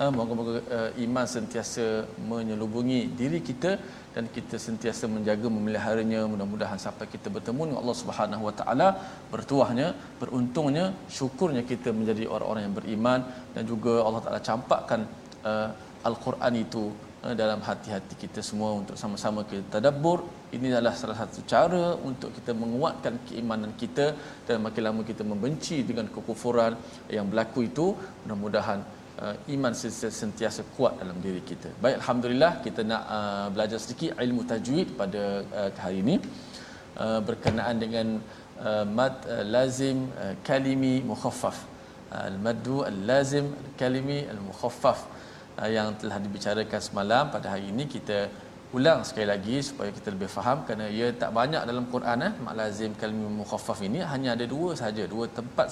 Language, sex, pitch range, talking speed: Malayalam, male, 110-125 Hz, 140 wpm